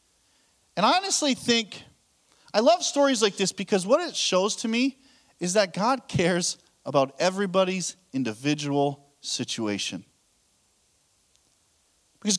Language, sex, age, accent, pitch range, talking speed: English, male, 40-59, American, 185-265 Hz, 115 wpm